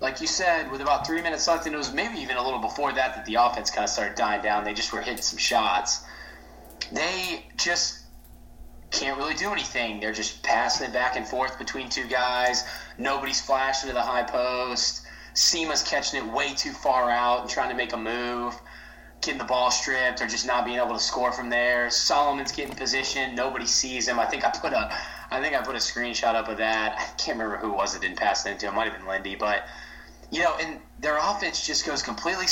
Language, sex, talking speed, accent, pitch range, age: English, male, 230 wpm, American, 110-135 Hz, 20-39